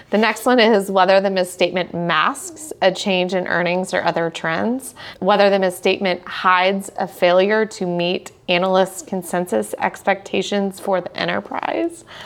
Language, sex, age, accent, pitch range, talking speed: English, female, 30-49, American, 180-210 Hz, 140 wpm